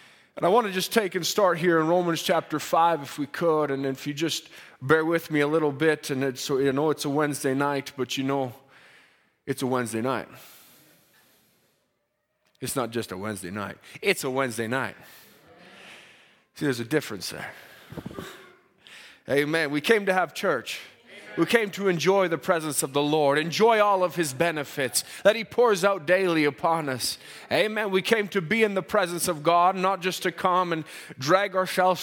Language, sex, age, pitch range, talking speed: English, male, 30-49, 135-185 Hz, 185 wpm